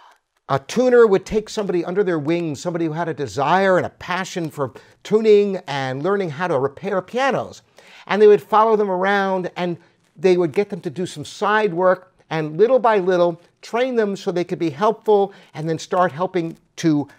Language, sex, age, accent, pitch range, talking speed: English, male, 50-69, American, 165-225 Hz, 195 wpm